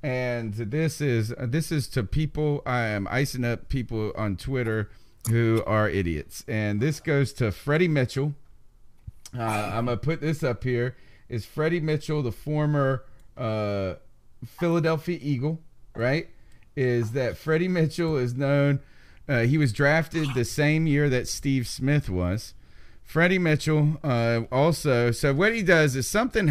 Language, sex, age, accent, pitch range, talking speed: English, male, 30-49, American, 110-145 Hz, 150 wpm